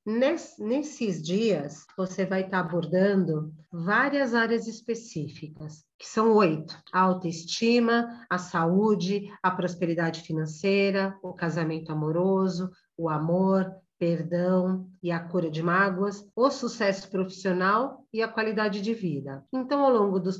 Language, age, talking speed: Portuguese, 40-59, 125 wpm